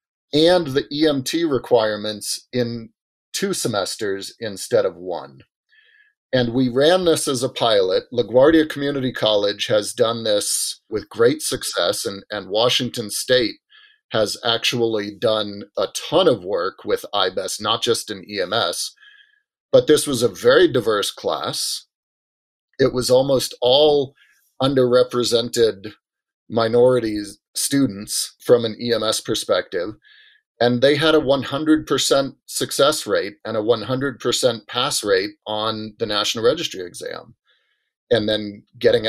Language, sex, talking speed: English, male, 125 wpm